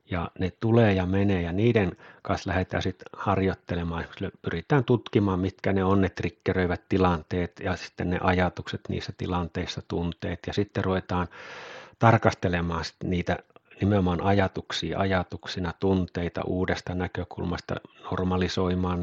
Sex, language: male, Finnish